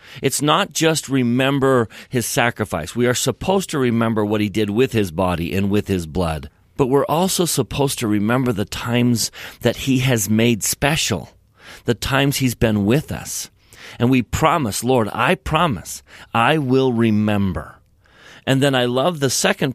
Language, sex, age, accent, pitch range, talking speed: English, male, 40-59, American, 100-135 Hz, 165 wpm